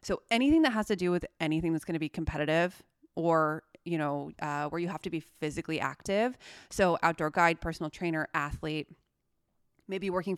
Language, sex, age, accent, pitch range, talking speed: English, female, 20-39, American, 165-210 Hz, 185 wpm